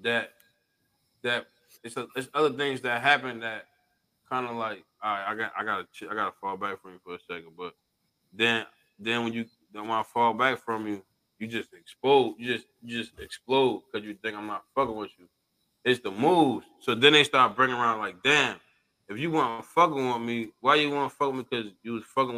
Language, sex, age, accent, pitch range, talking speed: English, male, 20-39, American, 115-145 Hz, 230 wpm